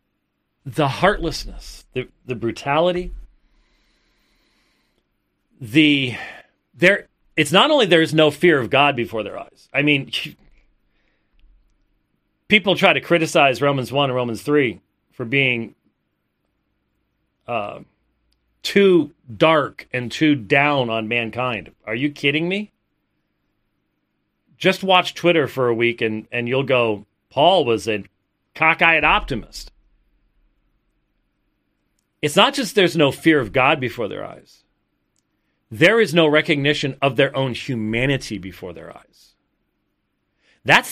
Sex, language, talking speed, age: male, English, 120 wpm, 40-59